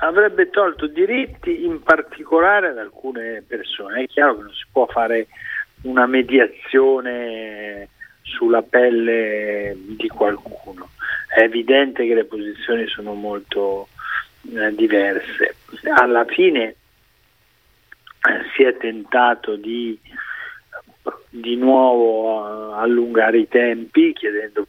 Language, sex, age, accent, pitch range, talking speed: Italian, male, 40-59, native, 105-135 Hz, 105 wpm